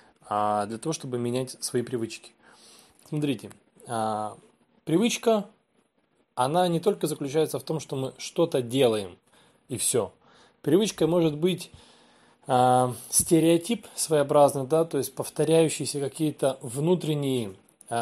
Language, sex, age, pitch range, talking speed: Russian, male, 20-39, 120-160 Hz, 105 wpm